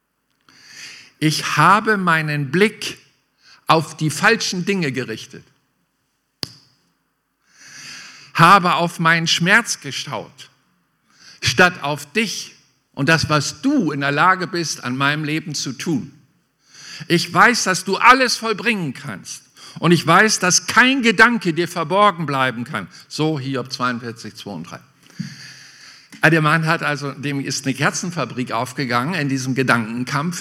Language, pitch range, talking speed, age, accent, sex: German, 135-170 Hz, 125 wpm, 50-69, German, male